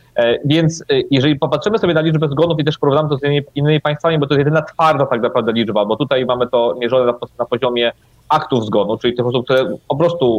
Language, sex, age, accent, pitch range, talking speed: Polish, male, 30-49, native, 120-150 Hz, 220 wpm